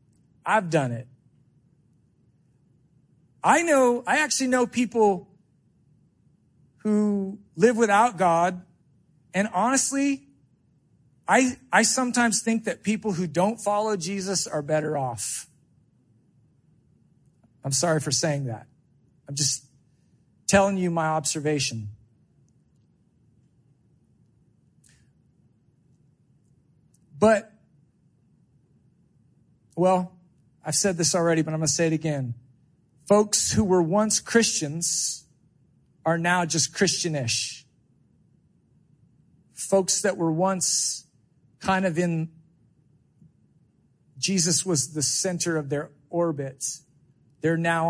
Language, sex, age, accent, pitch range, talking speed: English, male, 40-59, American, 140-185 Hz, 95 wpm